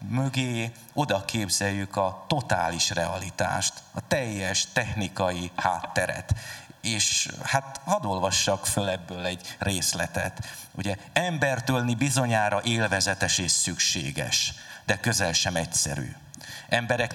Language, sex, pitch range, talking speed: Hungarian, male, 95-120 Hz, 100 wpm